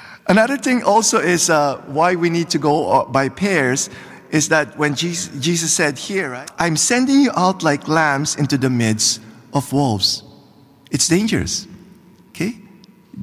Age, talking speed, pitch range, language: 50-69, 150 wpm, 140-200 Hz, English